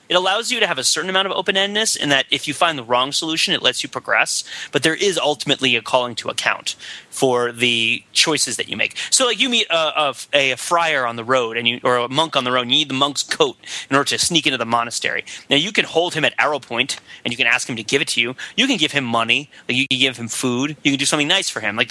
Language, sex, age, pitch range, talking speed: English, male, 30-49, 125-175 Hz, 290 wpm